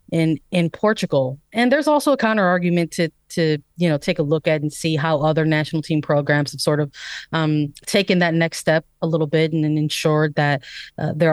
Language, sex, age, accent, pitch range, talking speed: English, female, 30-49, American, 150-180 Hz, 215 wpm